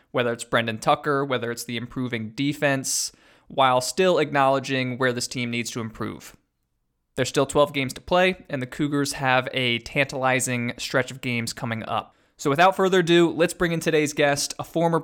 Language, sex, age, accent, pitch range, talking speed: English, male, 20-39, American, 125-145 Hz, 185 wpm